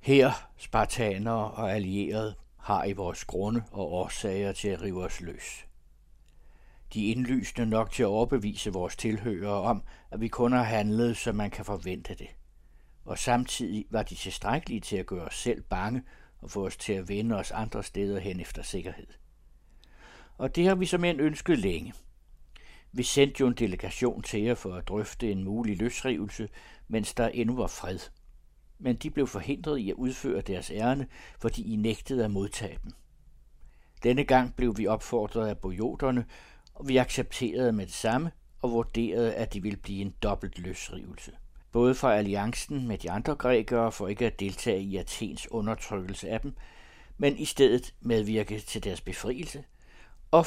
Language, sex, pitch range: Danish, male, 100-125 Hz